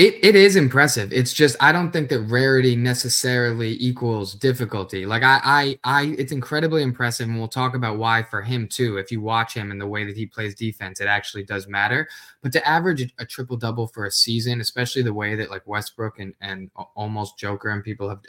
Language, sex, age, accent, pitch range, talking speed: English, male, 20-39, American, 105-130 Hz, 215 wpm